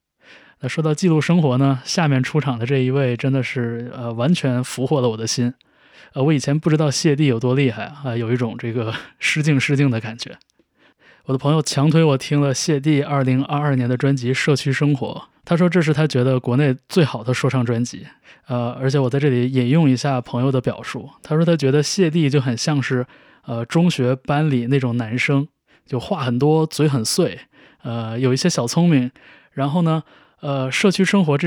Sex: male